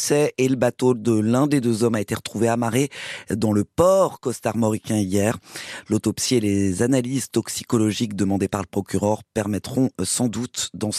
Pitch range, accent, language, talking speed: 120-165 Hz, French, French, 165 wpm